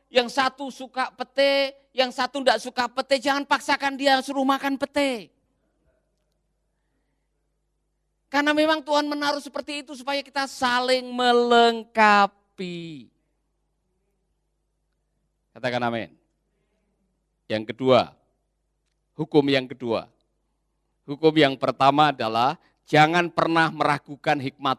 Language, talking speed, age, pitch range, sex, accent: Indonesian, 95 wpm, 40-59, 150-245 Hz, male, native